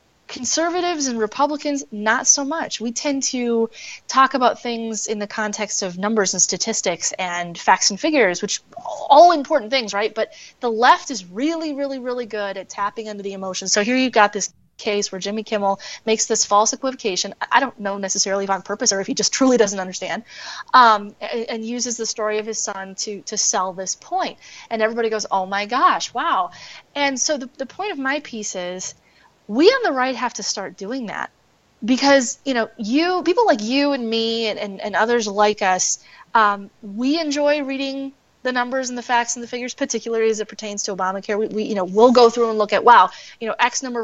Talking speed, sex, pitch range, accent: 210 wpm, female, 205-260 Hz, American